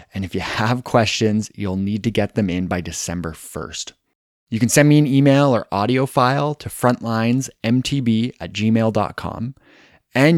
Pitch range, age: 100-130 Hz, 20-39